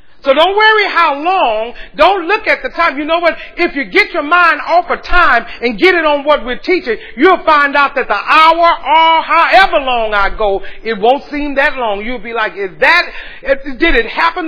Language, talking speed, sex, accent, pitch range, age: English, 215 wpm, male, American, 230-330 Hz, 40-59